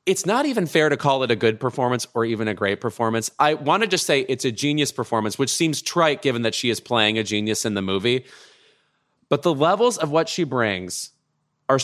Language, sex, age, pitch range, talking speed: English, male, 30-49, 120-155 Hz, 230 wpm